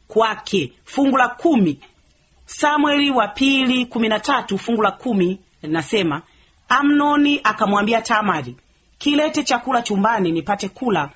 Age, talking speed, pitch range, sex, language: 40-59, 95 wpm, 175-265 Hz, female, Swahili